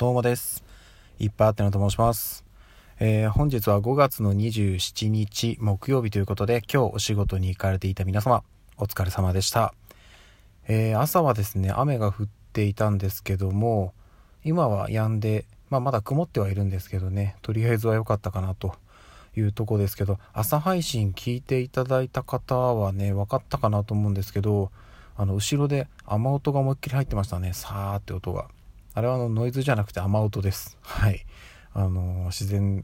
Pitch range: 100-115 Hz